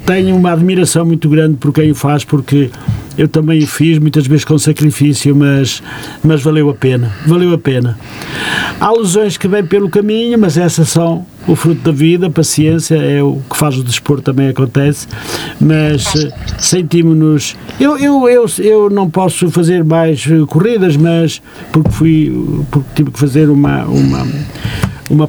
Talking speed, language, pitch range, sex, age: 165 wpm, Portuguese, 140-170 Hz, male, 50-69